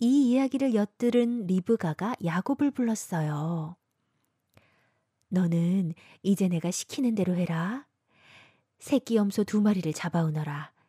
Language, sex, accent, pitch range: Korean, female, native, 175-240 Hz